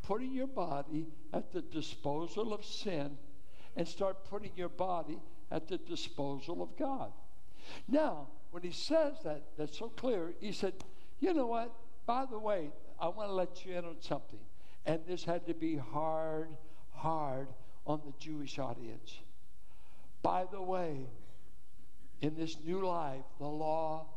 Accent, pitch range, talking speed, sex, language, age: American, 155-240 Hz, 155 wpm, male, English, 60-79